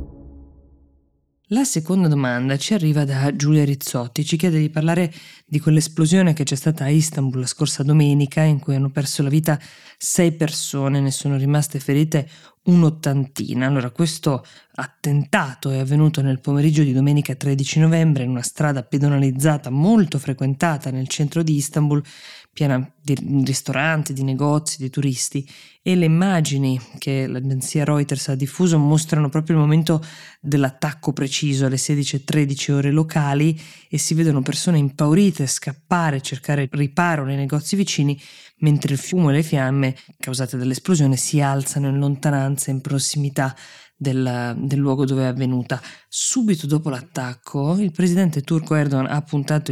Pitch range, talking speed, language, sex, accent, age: 135-155 Hz, 150 wpm, Italian, female, native, 20-39